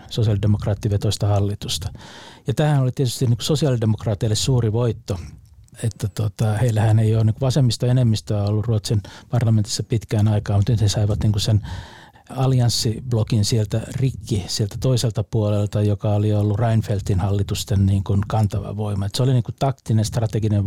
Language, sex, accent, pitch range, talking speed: Finnish, male, native, 105-120 Hz, 145 wpm